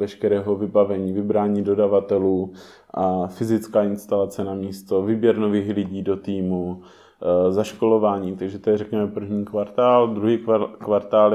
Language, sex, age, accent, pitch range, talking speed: Czech, male, 20-39, native, 100-105 Hz, 120 wpm